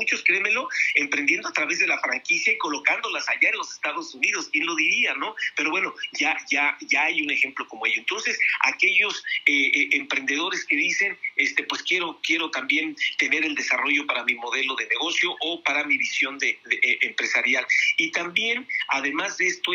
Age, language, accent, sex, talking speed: 50-69, Spanish, Mexican, male, 190 wpm